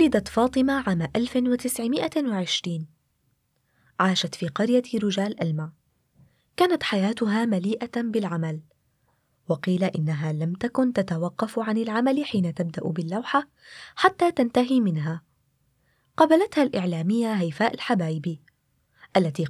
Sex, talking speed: female, 95 wpm